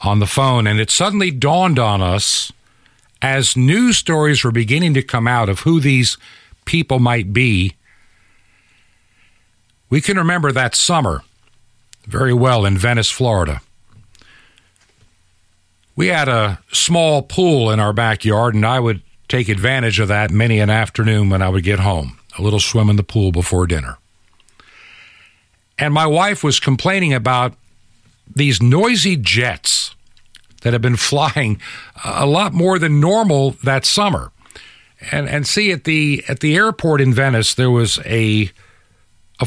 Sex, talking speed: male, 150 wpm